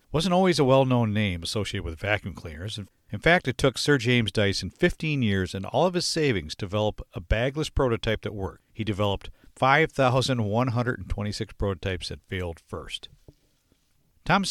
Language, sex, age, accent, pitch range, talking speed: English, male, 50-69, American, 100-135 Hz, 155 wpm